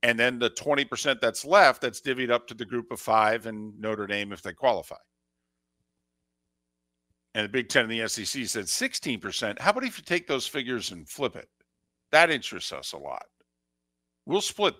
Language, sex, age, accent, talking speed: English, male, 50-69, American, 185 wpm